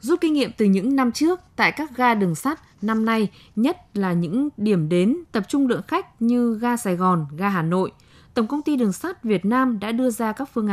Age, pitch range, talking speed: 20-39, 195-250 Hz, 235 wpm